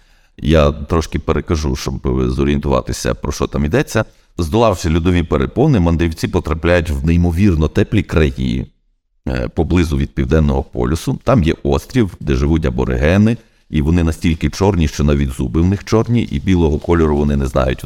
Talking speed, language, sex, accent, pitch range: 150 wpm, Ukrainian, male, native, 70-90 Hz